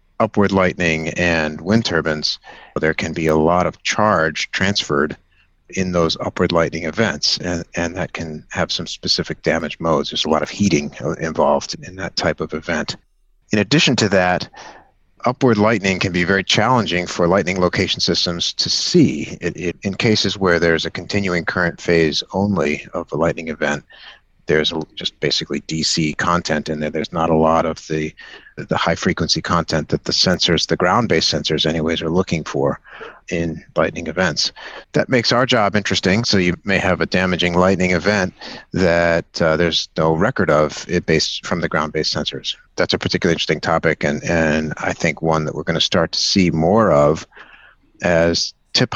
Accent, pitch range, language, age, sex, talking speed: American, 80-95 Hz, English, 50-69, male, 175 wpm